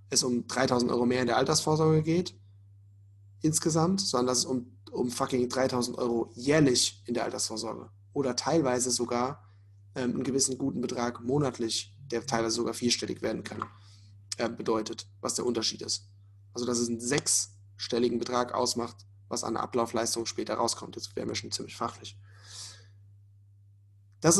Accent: German